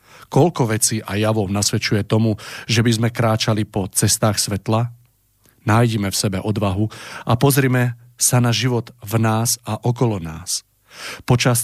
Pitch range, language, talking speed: 105-120 Hz, Slovak, 145 wpm